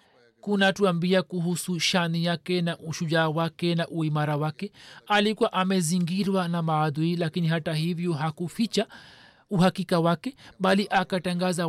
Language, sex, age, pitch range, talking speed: Swahili, male, 40-59, 150-180 Hz, 110 wpm